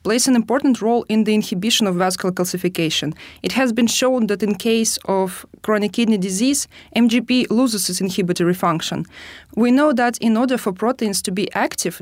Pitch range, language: 190-230 Hz, English